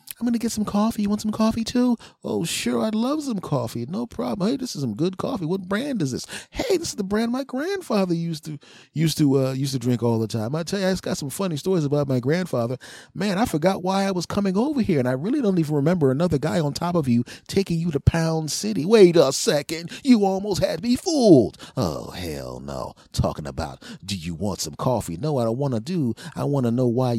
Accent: American